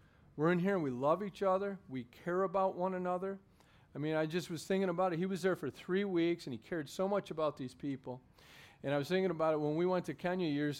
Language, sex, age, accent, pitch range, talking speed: English, male, 40-59, American, 145-190 Hz, 260 wpm